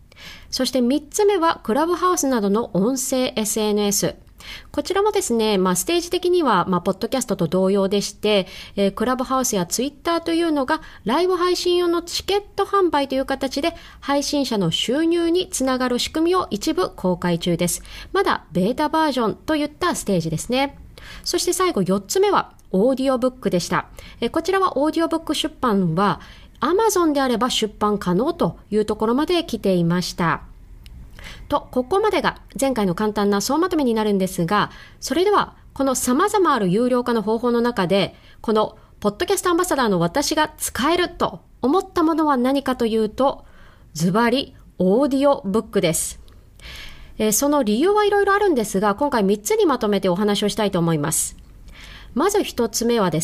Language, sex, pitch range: Japanese, female, 205-330 Hz